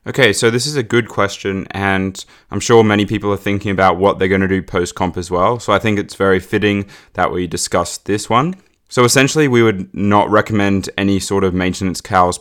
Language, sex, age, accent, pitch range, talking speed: English, male, 20-39, Australian, 95-105 Hz, 220 wpm